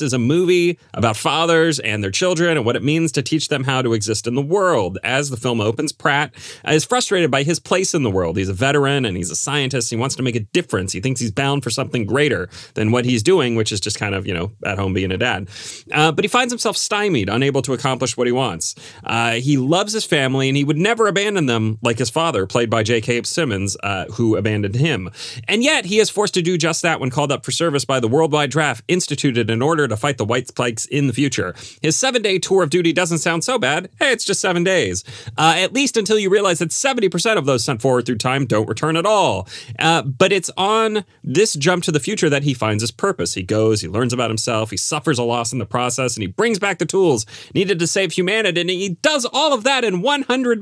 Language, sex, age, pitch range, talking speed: English, male, 30-49, 120-185 Hz, 250 wpm